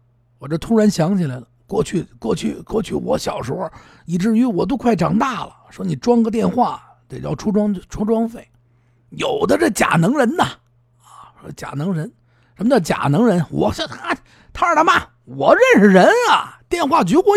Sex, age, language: male, 50-69, Chinese